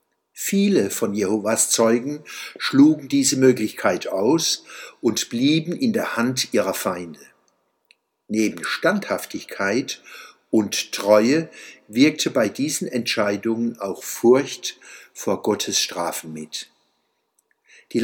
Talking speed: 100 wpm